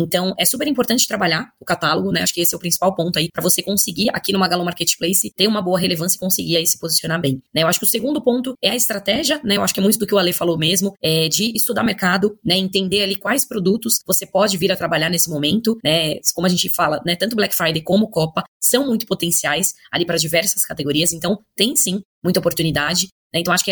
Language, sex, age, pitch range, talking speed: Portuguese, female, 20-39, 165-205 Hz, 245 wpm